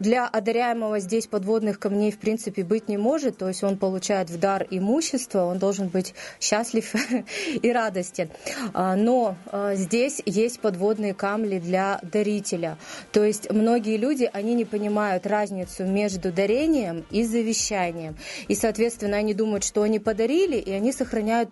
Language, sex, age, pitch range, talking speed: Russian, female, 30-49, 190-225 Hz, 145 wpm